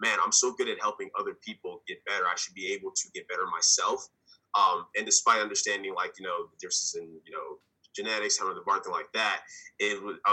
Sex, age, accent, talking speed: male, 20-39, American, 225 wpm